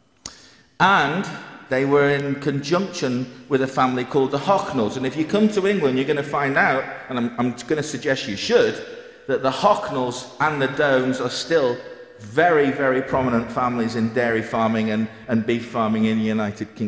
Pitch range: 110-130 Hz